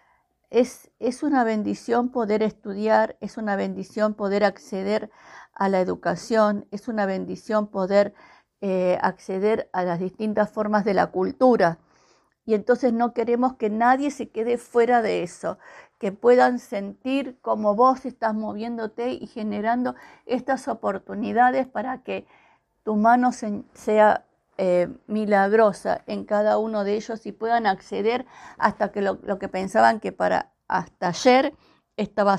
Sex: female